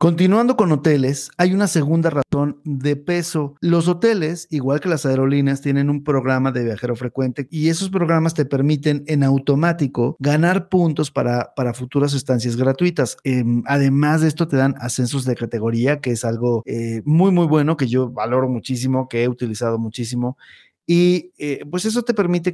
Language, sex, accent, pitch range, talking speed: Spanish, male, Mexican, 130-165 Hz, 175 wpm